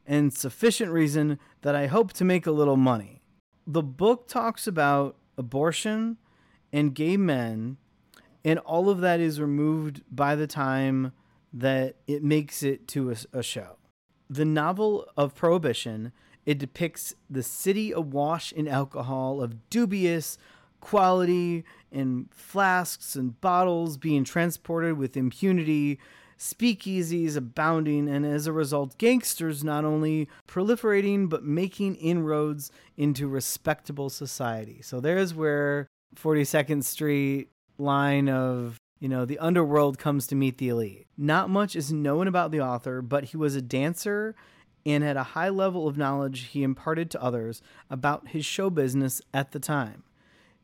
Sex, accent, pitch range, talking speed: male, American, 135-170 Hz, 140 wpm